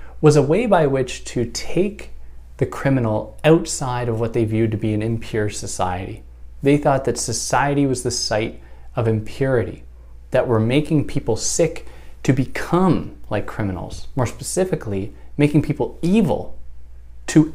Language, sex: English, male